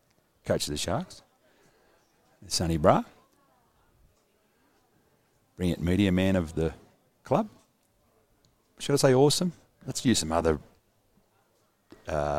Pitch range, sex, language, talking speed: 85-115 Hz, male, English, 105 wpm